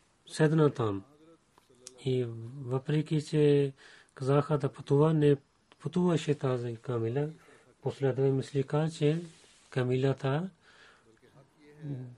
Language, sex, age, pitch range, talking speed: Bulgarian, male, 30-49, 125-145 Hz, 80 wpm